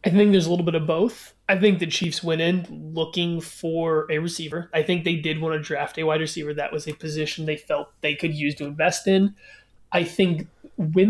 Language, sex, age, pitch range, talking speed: English, male, 20-39, 150-175 Hz, 230 wpm